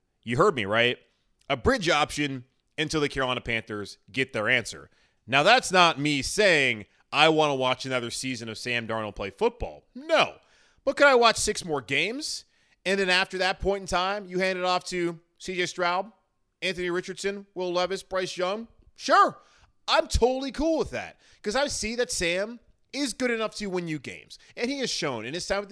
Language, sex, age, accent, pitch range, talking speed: English, male, 30-49, American, 125-185 Hz, 195 wpm